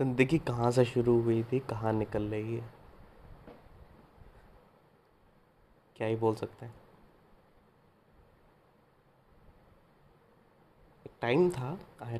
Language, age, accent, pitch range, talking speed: Hindi, 20-39, native, 120-130 Hz, 90 wpm